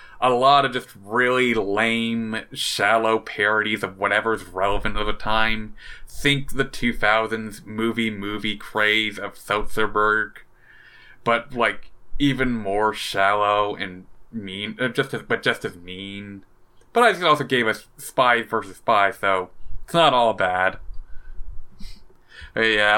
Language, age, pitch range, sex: English, 20-39, 110-130 Hz, male